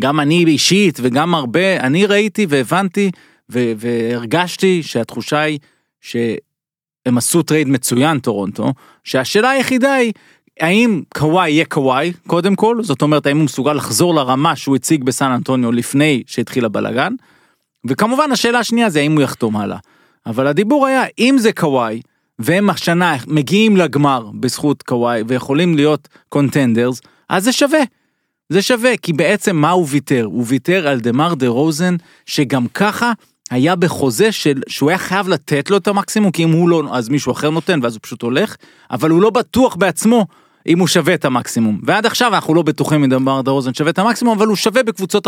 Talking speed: 170 wpm